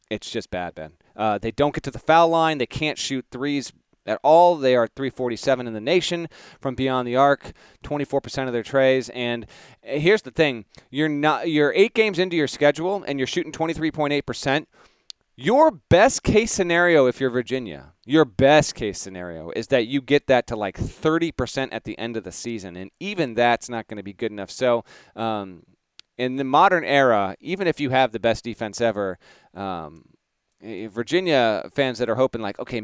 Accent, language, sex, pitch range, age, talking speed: American, English, male, 105-140 Hz, 30-49, 205 wpm